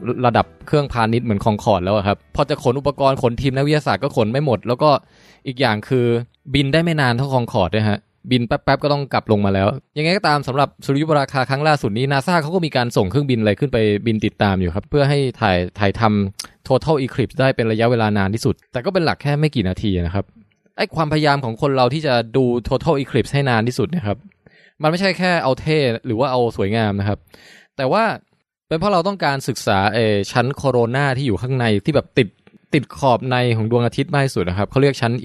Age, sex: 20-39, male